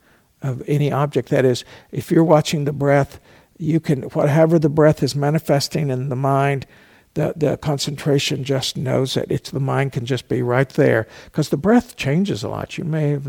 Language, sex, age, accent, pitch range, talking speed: English, male, 50-69, American, 130-155 Hz, 200 wpm